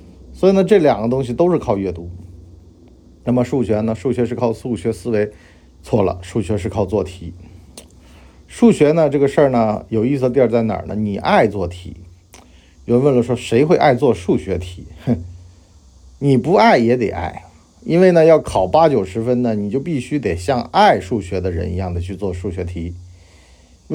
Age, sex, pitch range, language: 50-69, male, 90-140 Hz, Chinese